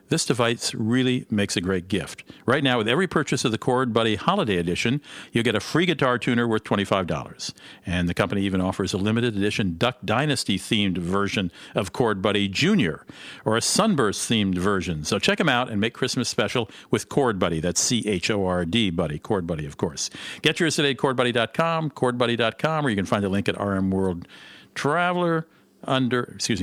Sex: male